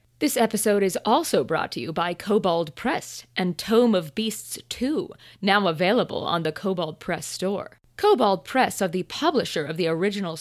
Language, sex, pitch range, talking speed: English, female, 175-225 Hz, 175 wpm